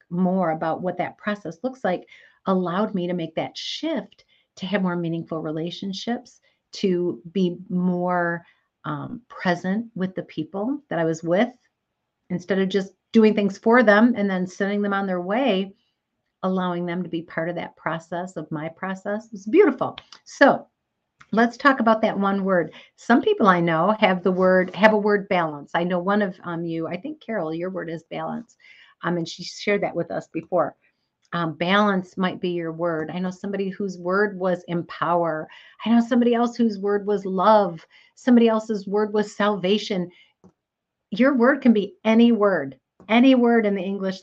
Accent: American